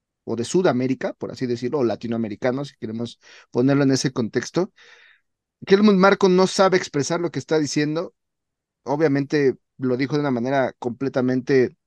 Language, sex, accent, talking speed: Spanish, male, Mexican, 150 wpm